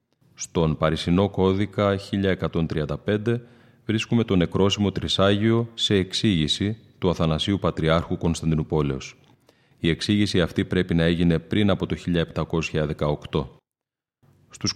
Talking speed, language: 100 wpm, Greek